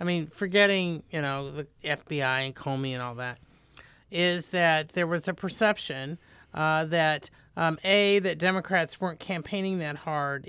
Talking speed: 160 wpm